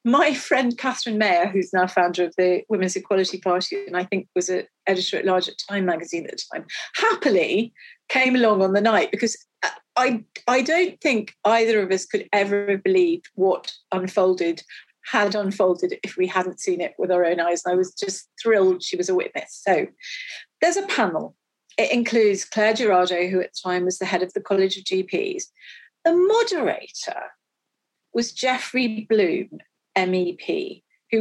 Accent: British